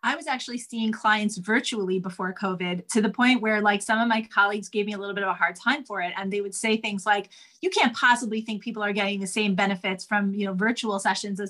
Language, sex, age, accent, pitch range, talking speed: English, female, 30-49, American, 200-225 Hz, 260 wpm